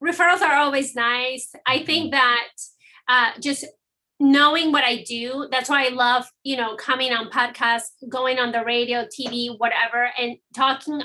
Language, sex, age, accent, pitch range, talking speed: English, female, 30-49, American, 240-280 Hz, 165 wpm